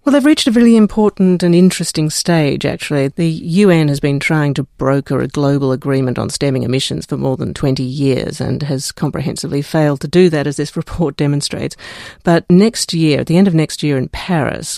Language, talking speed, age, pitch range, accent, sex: English, 205 wpm, 50-69, 140-165 Hz, Australian, female